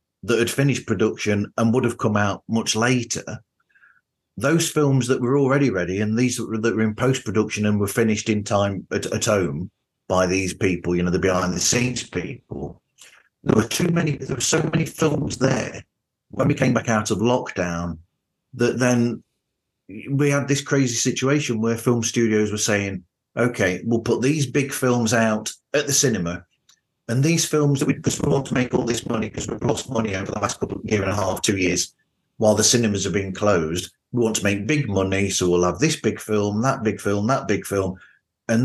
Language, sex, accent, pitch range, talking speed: English, male, British, 100-130 Hz, 205 wpm